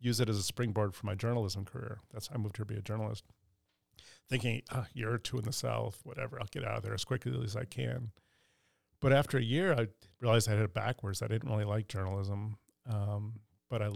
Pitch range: 105-130 Hz